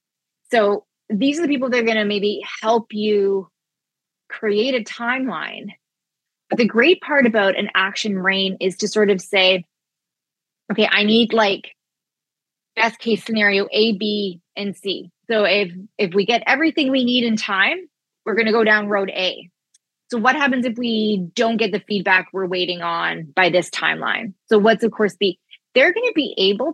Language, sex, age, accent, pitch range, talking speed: English, female, 20-39, American, 190-230 Hz, 175 wpm